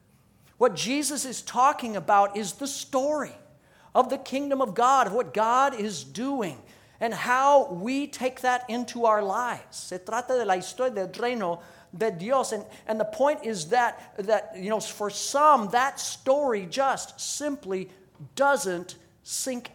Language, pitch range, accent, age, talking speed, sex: English, 195-255 Hz, American, 50-69, 160 wpm, male